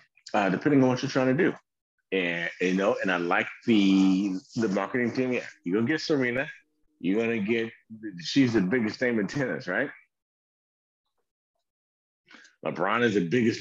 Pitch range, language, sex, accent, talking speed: 85-125 Hz, English, male, American, 165 wpm